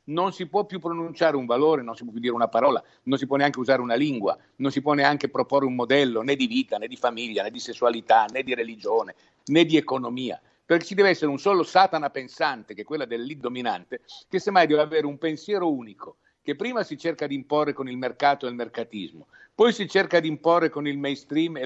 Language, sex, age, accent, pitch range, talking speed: Italian, male, 50-69, native, 130-180 Hz, 230 wpm